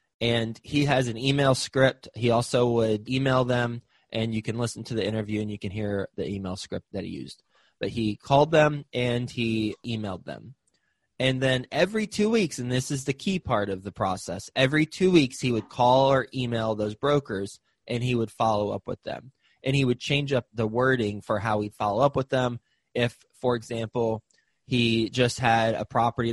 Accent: American